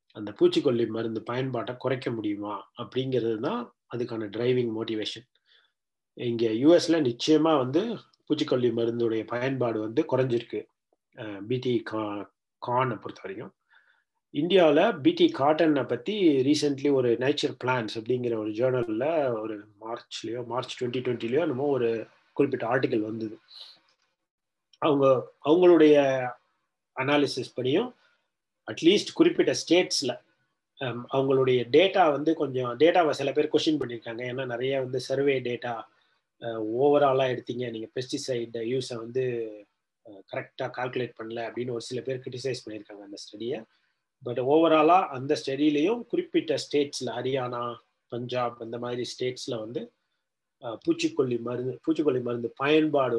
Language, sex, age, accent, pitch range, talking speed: Tamil, male, 30-49, native, 115-145 Hz, 115 wpm